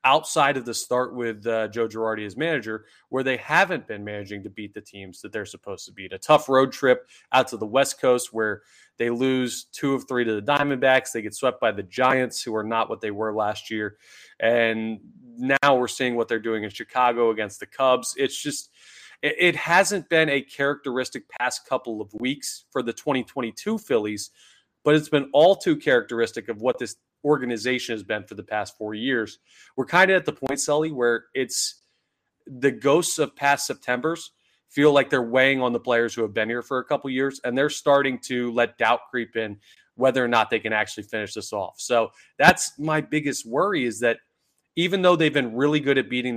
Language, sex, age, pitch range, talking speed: English, male, 20-39, 110-140 Hz, 210 wpm